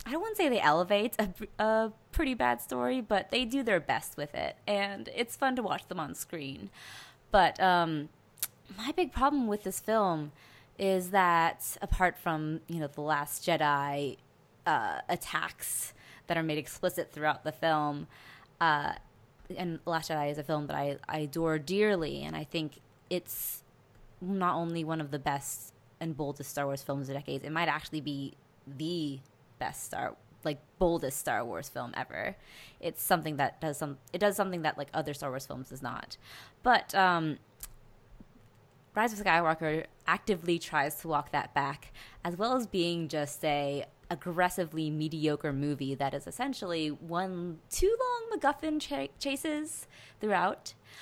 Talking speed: 165 wpm